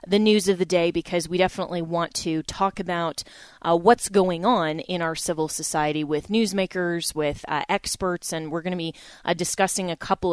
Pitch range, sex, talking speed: 165-195 Hz, female, 200 wpm